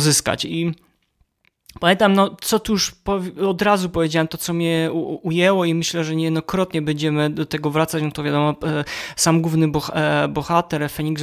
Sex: male